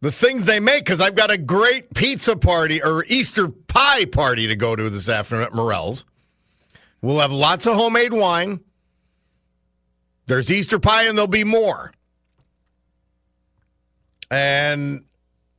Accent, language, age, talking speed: American, English, 50-69, 140 wpm